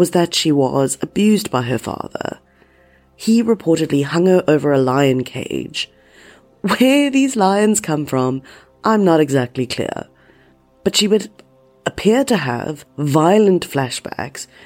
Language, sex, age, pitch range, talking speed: English, female, 30-49, 130-180 Hz, 135 wpm